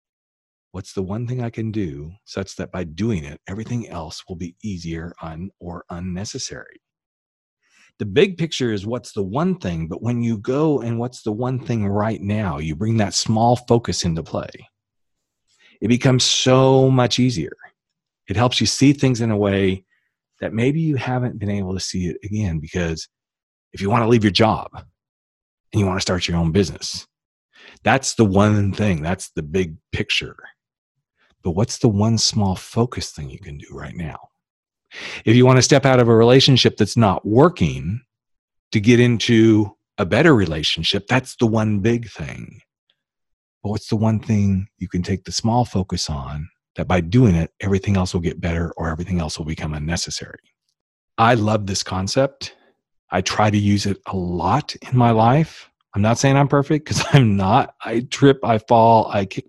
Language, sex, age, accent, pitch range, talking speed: English, male, 40-59, American, 95-120 Hz, 185 wpm